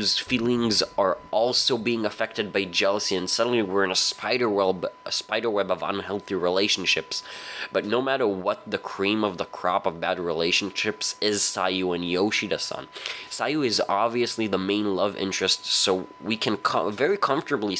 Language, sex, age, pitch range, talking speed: English, male, 20-39, 100-120 Hz, 165 wpm